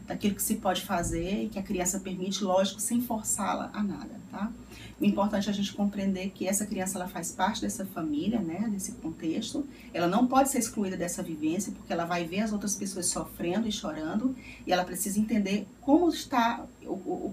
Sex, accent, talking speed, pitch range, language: female, Brazilian, 195 wpm, 200-250 Hz, Portuguese